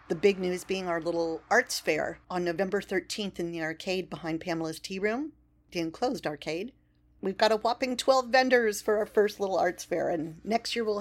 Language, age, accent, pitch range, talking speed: English, 50-69, American, 160-195 Hz, 200 wpm